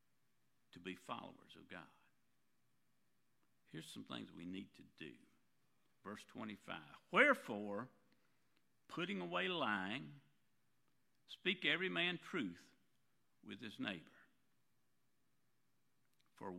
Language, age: English, 60-79